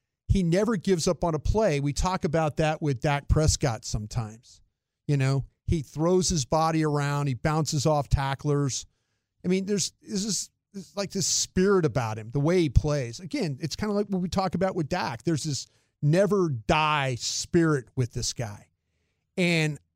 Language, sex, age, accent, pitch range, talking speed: English, male, 40-59, American, 135-185 Hz, 185 wpm